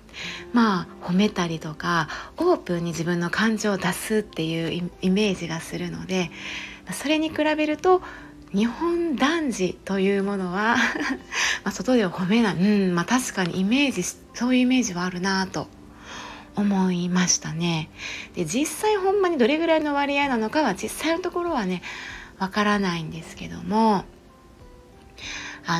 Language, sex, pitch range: Japanese, female, 180-240 Hz